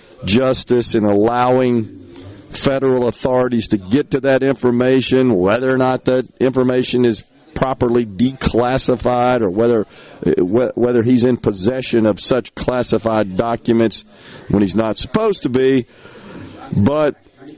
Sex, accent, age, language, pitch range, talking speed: male, American, 50-69, English, 115-135 Hz, 120 wpm